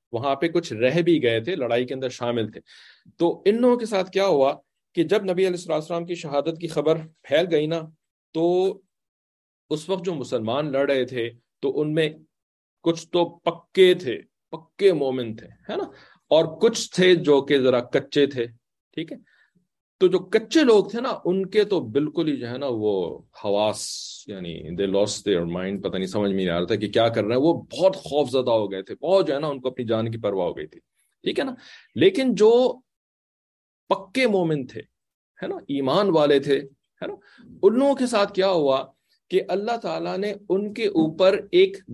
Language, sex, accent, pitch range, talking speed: English, male, Indian, 125-195 Hz, 195 wpm